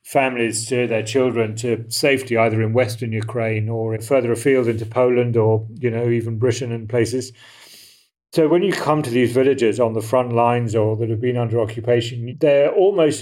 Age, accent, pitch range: 40-59, British, 120-135 Hz